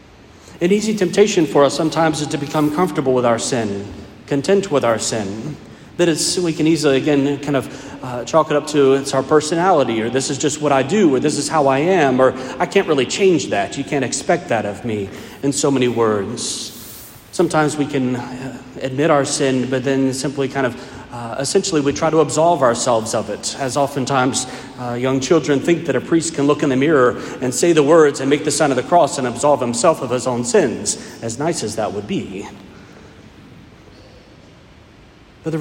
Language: English